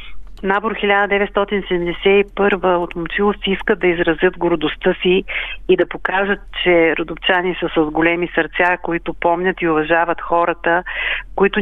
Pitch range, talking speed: 175-200 Hz, 125 wpm